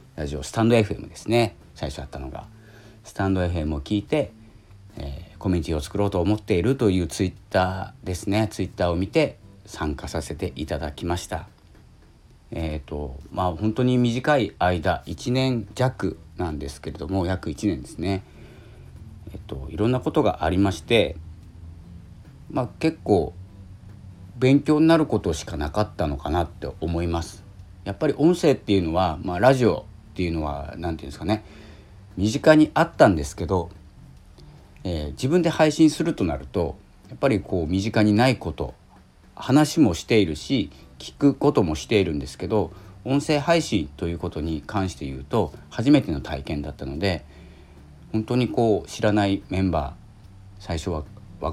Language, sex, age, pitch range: Japanese, male, 50-69, 80-105 Hz